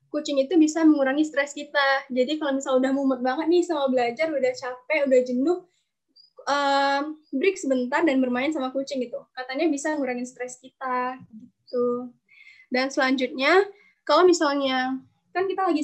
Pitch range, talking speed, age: 260-310 Hz, 150 wpm, 10-29